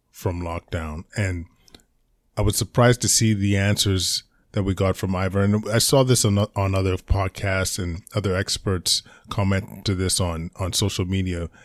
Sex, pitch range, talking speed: male, 90-105 Hz, 170 wpm